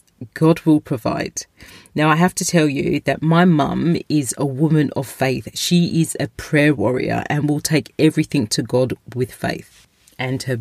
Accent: British